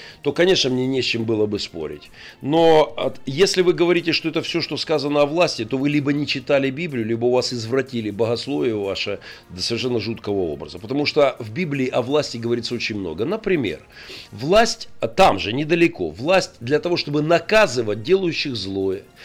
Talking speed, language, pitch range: 180 wpm, Russian, 135-205 Hz